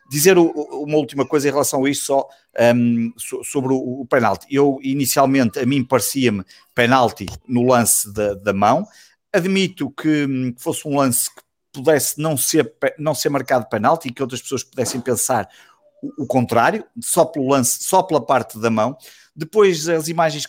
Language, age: Portuguese, 50-69